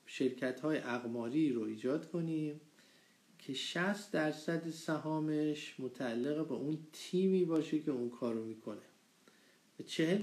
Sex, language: male, Persian